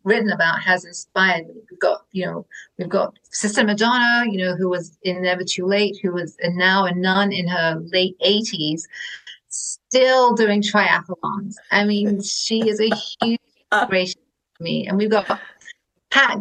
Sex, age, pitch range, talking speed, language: female, 30-49, 180-215 Hz, 170 wpm, English